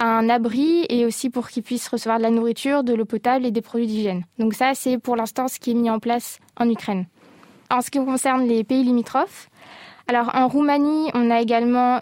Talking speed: 220 wpm